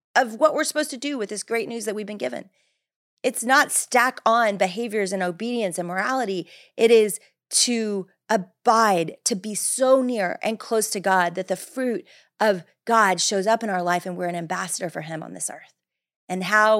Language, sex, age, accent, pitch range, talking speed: English, female, 30-49, American, 180-240 Hz, 200 wpm